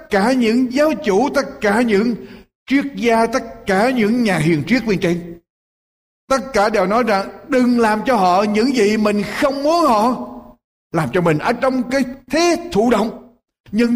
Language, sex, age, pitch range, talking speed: Vietnamese, male, 60-79, 205-275 Hz, 185 wpm